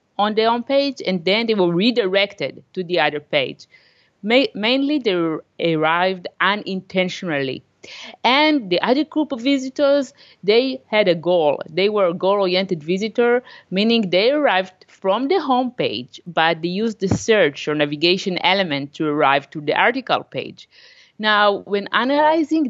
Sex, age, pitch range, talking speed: female, 50-69, 165-215 Hz, 150 wpm